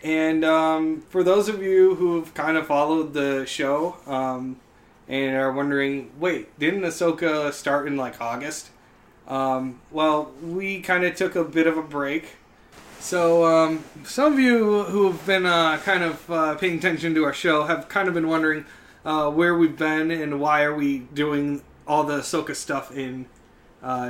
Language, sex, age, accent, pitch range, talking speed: English, male, 20-39, American, 125-160 Hz, 175 wpm